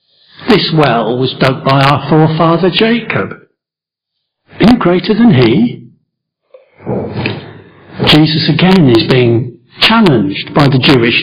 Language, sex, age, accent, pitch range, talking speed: English, male, 60-79, British, 135-185 Hz, 110 wpm